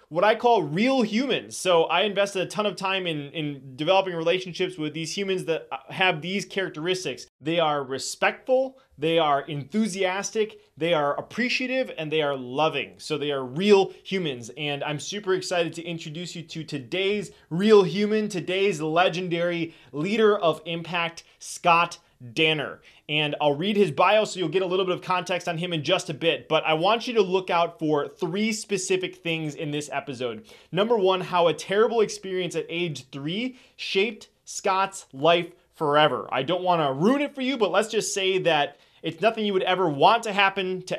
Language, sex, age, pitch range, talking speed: English, male, 20-39, 155-200 Hz, 185 wpm